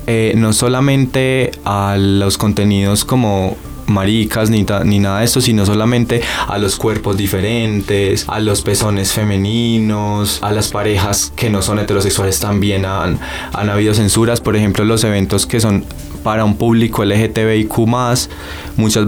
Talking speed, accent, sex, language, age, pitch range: 150 wpm, Colombian, male, Spanish, 20-39, 95-115 Hz